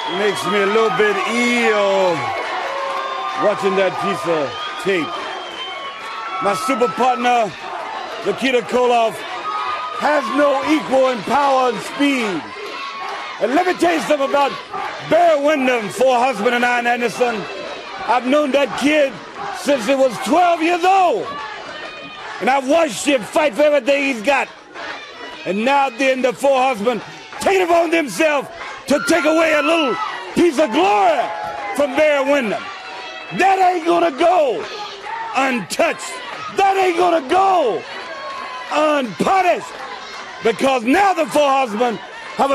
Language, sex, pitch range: English, male, 230-330 Hz